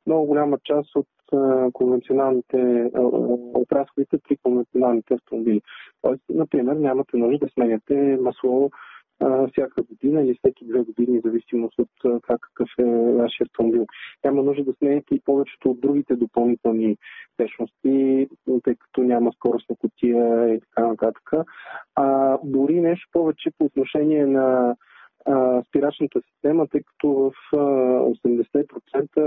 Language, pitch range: Bulgarian, 125-145 Hz